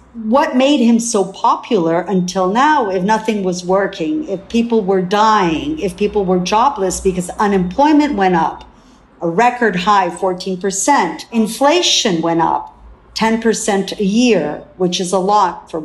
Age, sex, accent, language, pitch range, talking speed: 50-69, female, American, English, 185-245 Hz, 145 wpm